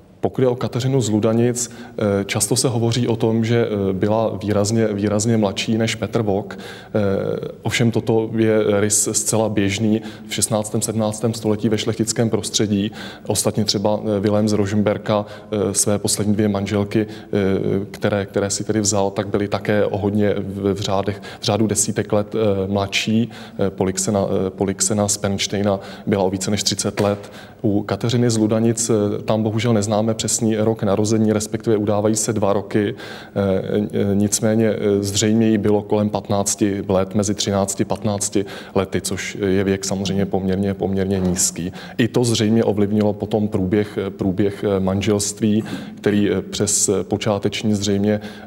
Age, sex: 20-39, male